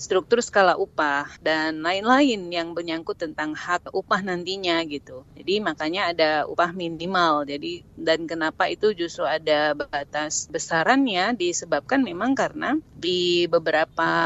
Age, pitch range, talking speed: 30-49, 160-195 Hz, 125 wpm